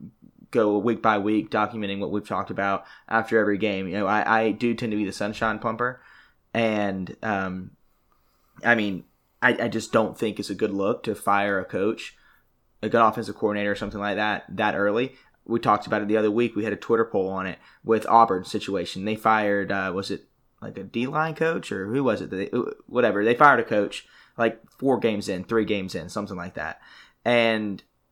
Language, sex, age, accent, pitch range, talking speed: English, male, 20-39, American, 100-115 Hz, 205 wpm